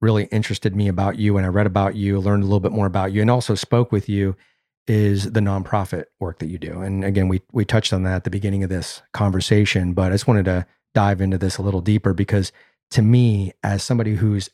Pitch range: 100-110 Hz